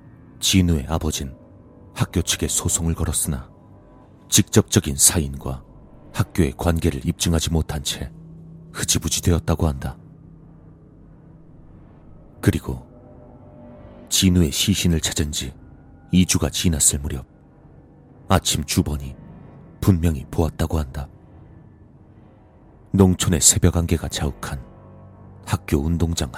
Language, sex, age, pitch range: Korean, male, 40-59, 75-95 Hz